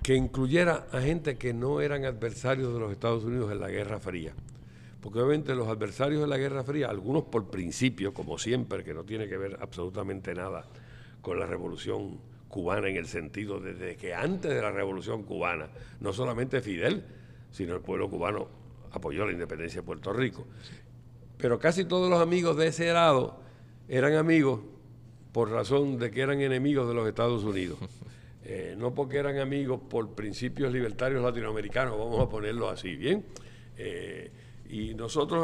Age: 60-79